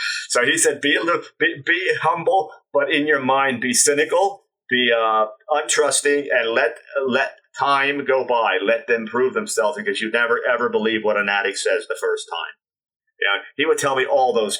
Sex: male